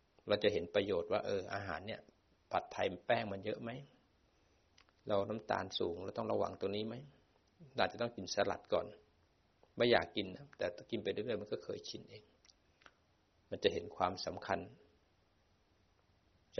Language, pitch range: Thai, 95-115 Hz